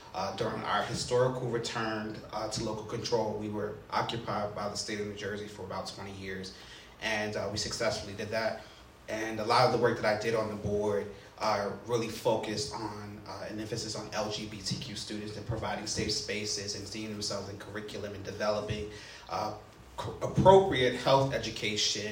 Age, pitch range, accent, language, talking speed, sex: 30-49, 105-120 Hz, American, English, 175 wpm, male